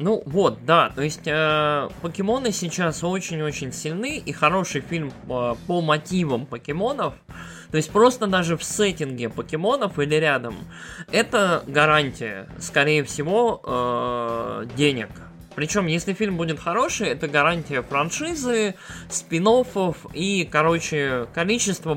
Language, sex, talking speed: Russian, male, 120 wpm